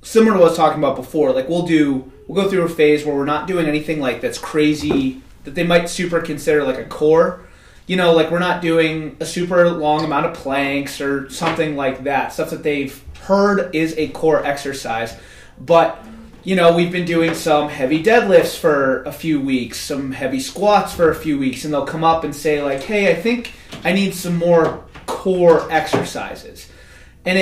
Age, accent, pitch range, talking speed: 30-49, American, 145-180 Hz, 205 wpm